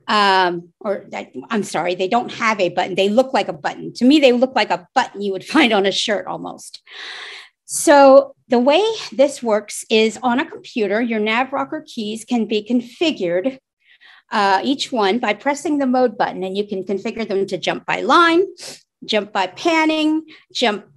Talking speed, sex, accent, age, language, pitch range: 185 wpm, female, American, 50-69, English, 200-270 Hz